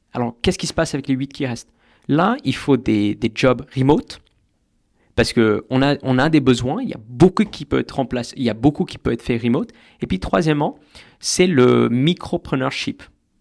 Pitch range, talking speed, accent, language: 120-150 Hz, 210 wpm, French, French